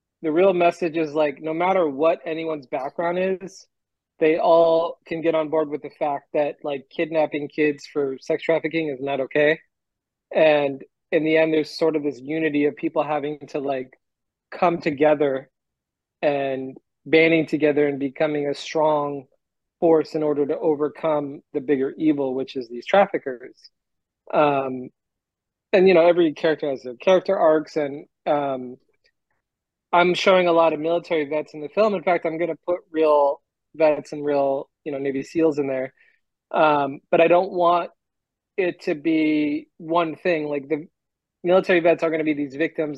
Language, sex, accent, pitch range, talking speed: English, male, American, 145-165 Hz, 170 wpm